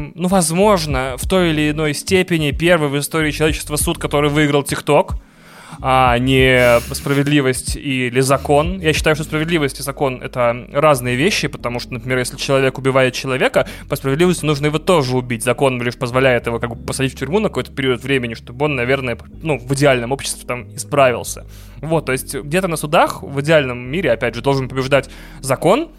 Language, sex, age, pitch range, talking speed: Russian, male, 20-39, 130-155 Hz, 175 wpm